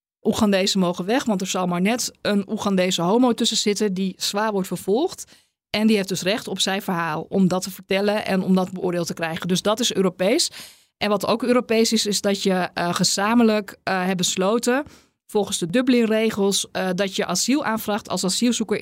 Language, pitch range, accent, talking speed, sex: Dutch, 185-220 Hz, Dutch, 195 wpm, female